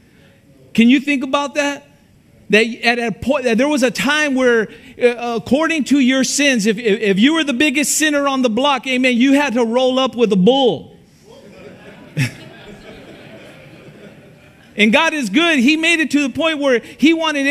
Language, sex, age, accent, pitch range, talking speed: English, male, 50-69, American, 195-275 Hz, 180 wpm